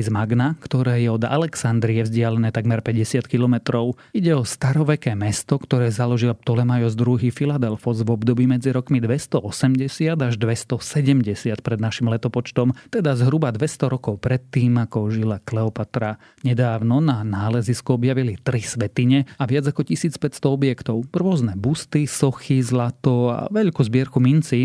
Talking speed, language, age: 135 wpm, Slovak, 30-49